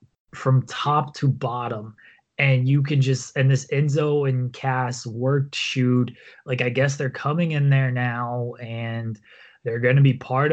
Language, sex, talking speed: English, male, 165 wpm